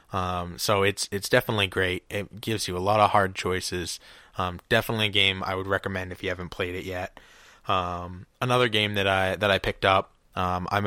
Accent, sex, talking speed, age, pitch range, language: American, male, 210 wpm, 20-39, 95-110 Hz, English